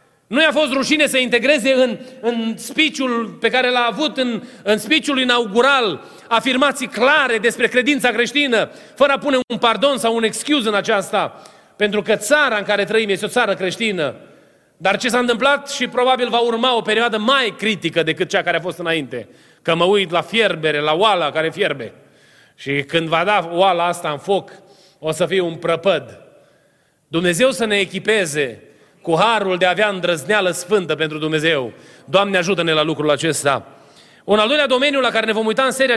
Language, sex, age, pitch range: Romanian, male, 30-49, 190-255 Hz